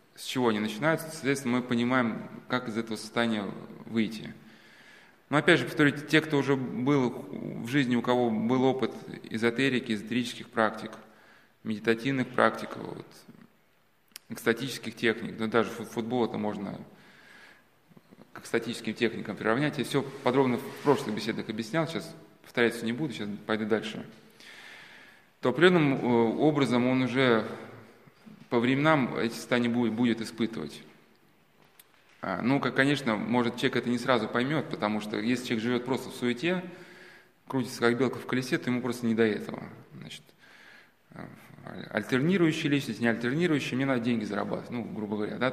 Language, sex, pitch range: Russian, male, 115-140 Hz